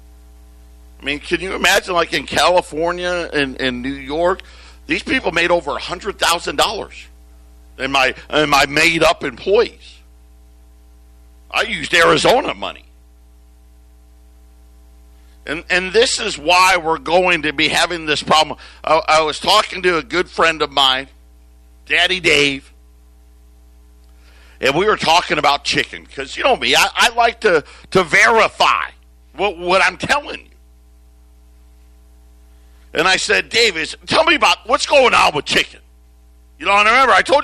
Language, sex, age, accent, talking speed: English, male, 50-69, American, 145 wpm